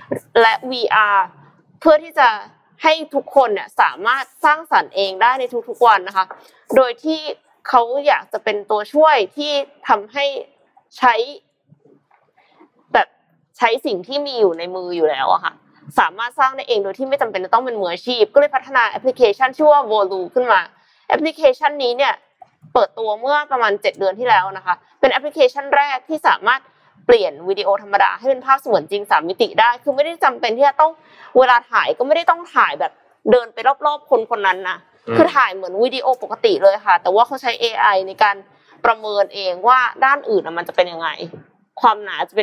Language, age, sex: Thai, 20-39, female